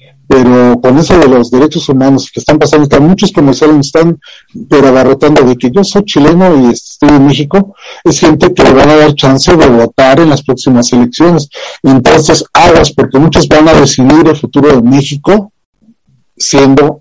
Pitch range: 130-160 Hz